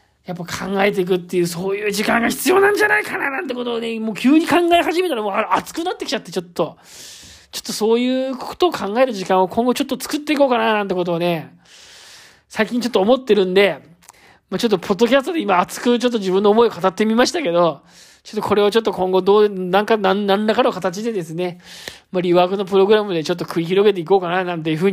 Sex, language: male, Japanese